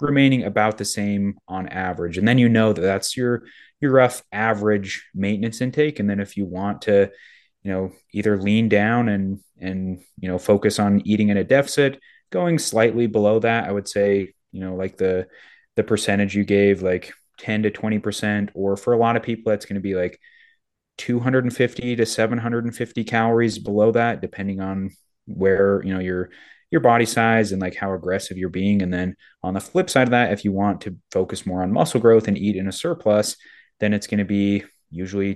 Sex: male